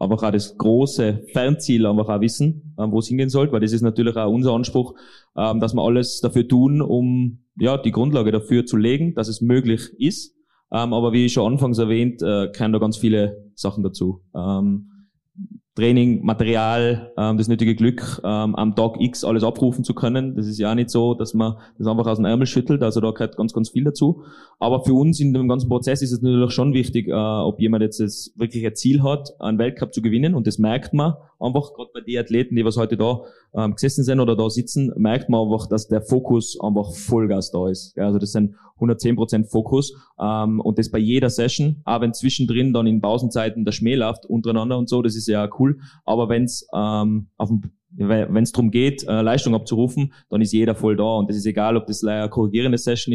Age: 20-39